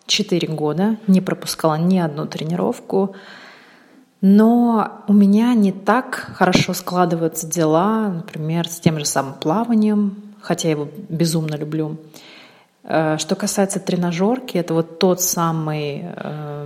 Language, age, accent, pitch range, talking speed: Russian, 30-49, native, 165-205 Hz, 120 wpm